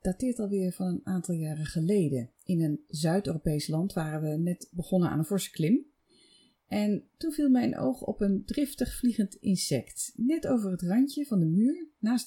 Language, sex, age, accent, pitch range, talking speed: Dutch, female, 30-49, Dutch, 155-220 Hz, 180 wpm